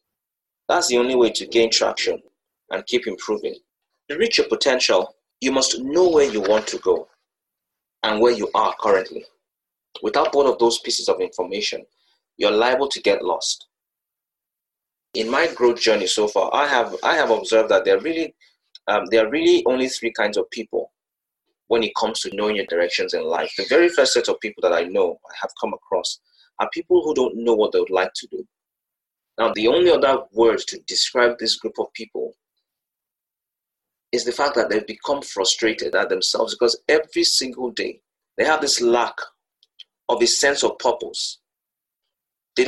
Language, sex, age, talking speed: English, male, 30-49, 185 wpm